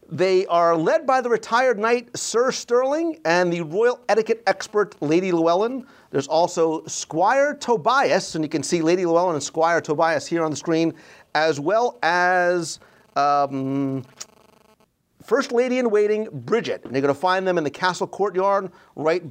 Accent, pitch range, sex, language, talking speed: American, 140-200 Hz, male, English, 155 wpm